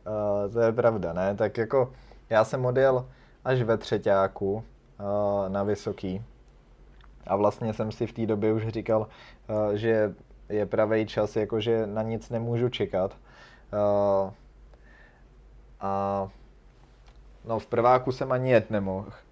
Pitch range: 100-115 Hz